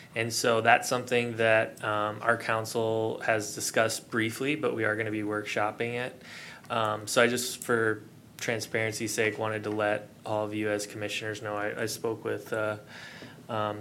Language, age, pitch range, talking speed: English, 20-39, 105-115 Hz, 180 wpm